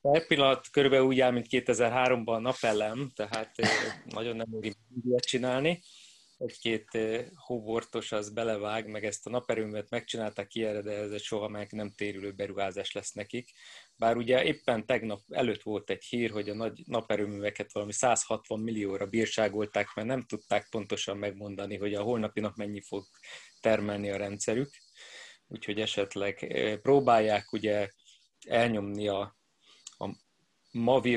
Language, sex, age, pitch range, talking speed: Hungarian, male, 30-49, 105-120 Hz, 135 wpm